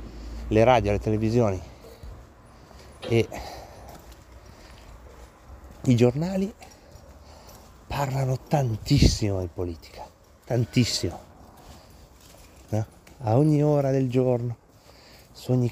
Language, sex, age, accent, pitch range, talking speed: Italian, male, 30-49, native, 90-130 Hz, 75 wpm